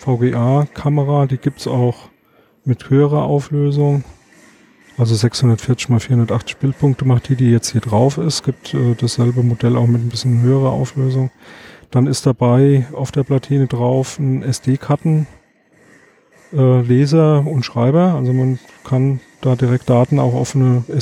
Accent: German